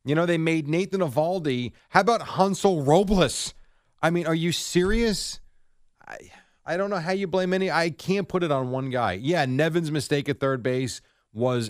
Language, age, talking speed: English, 30-49, 190 wpm